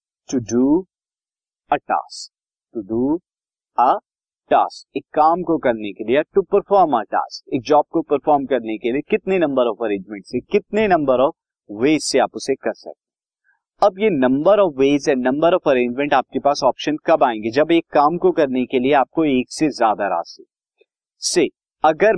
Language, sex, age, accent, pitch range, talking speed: Hindi, male, 30-49, native, 130-190 Hz, 170 wpm